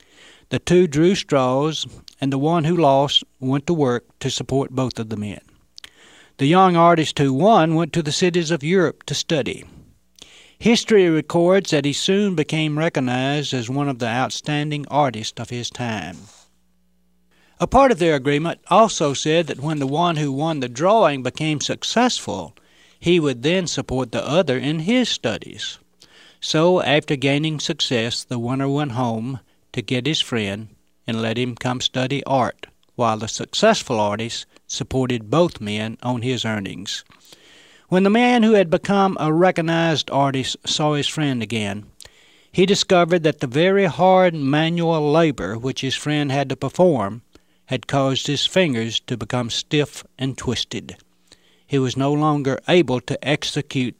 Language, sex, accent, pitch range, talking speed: English, male, American, 125-165 Hz, 160 wpm